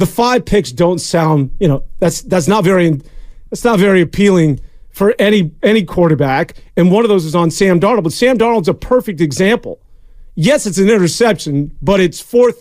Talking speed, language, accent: 190 wpm, English, American